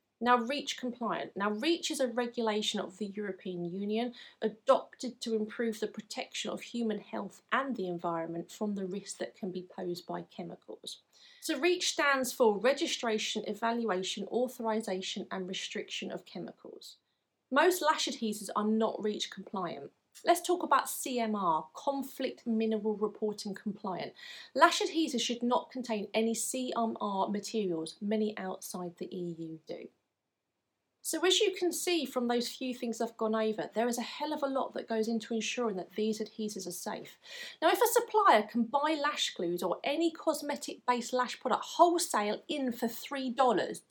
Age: 30-49